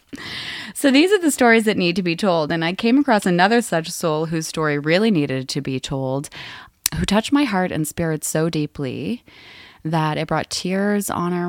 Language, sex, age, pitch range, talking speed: English, female, 20-39, 150-190 Hz, 195 wpm